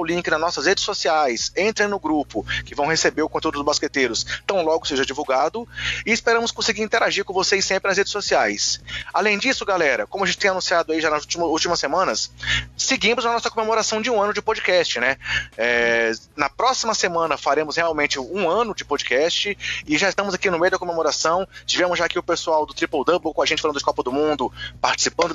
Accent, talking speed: Brazilian, 205 wpm